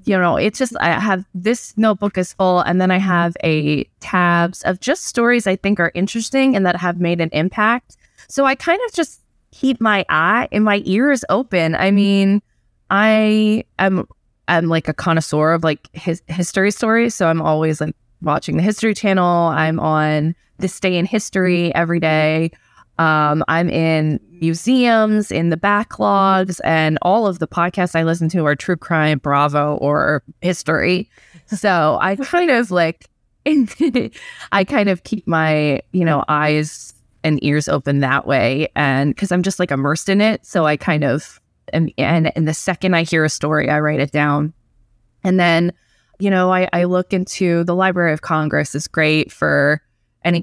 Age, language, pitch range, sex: 20-39, English, 155-195 Hz, female